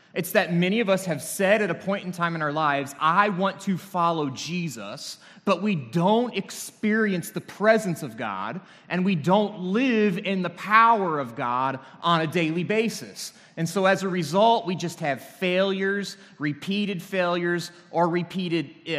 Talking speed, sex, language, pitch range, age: 170 wpm, male, English, 150-200 Hz, 30-49